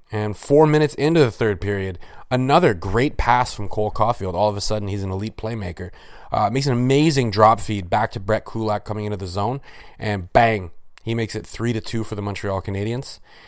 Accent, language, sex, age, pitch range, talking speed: American, English, male, 30-49, 95-115 Hz, 210 wpm